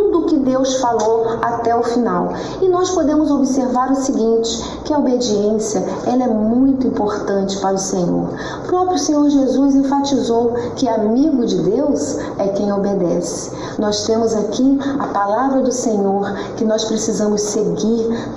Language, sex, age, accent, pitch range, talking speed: Portuguese, female, 40-59, Brazilian, 215-290 Hz, 145 wpm